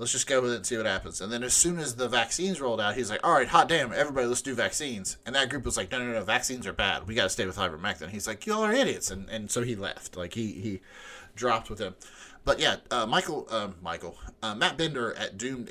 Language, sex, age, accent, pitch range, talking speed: English, male, 30-49, American, 105-130 Hz, 280 wpm